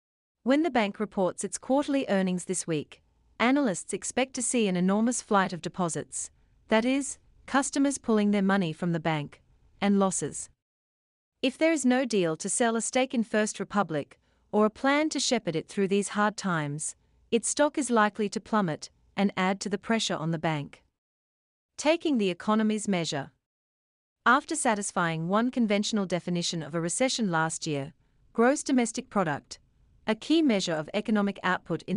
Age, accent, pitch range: 40-59, Australian, 175-240 Hz